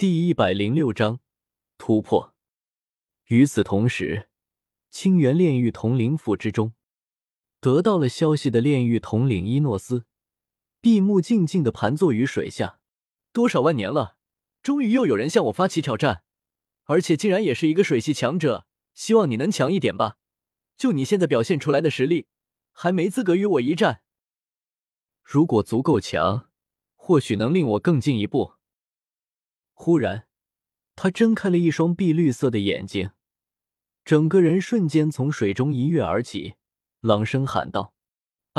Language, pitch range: Chinese, 110-165 Hz